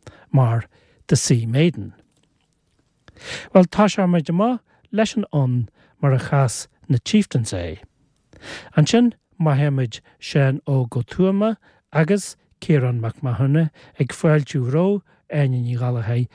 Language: English